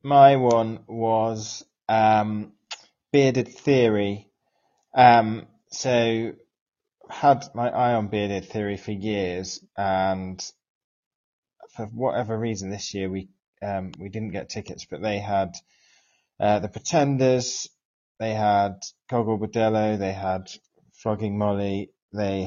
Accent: British